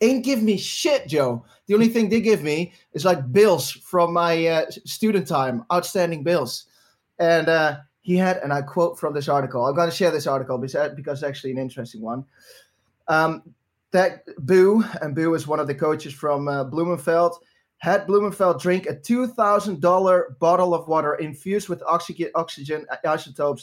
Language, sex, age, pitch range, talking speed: English, male, 20-39, 145-185 Hz, 175 wpm